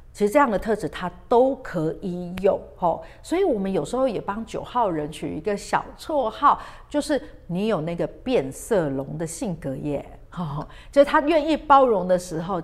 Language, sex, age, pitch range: Chinese, female, 50-69, 170-250 Hz